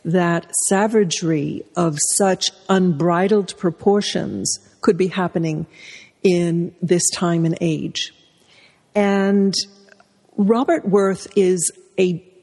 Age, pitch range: 60-79, 175-205 Hz